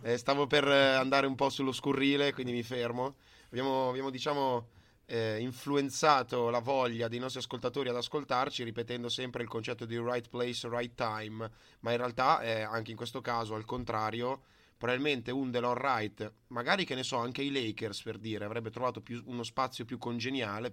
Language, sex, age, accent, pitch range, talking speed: Italian, male, 20-39, native, 110-130 Hz, 180 wpm